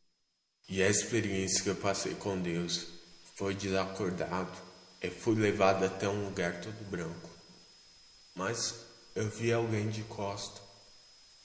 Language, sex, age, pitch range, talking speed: Portuguese, male, 20-39, 90-110 Hz, 125 wpm